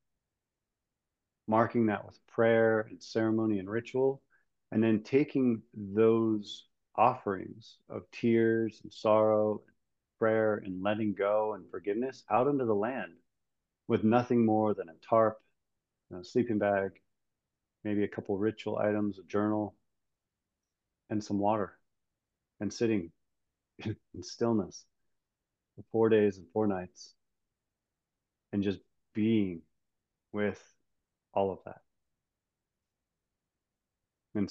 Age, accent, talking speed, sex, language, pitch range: 40-59, American, 115 wpm, male, English, 100-110 Hz